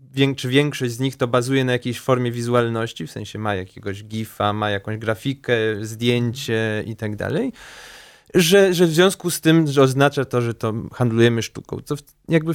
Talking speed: 170 wpm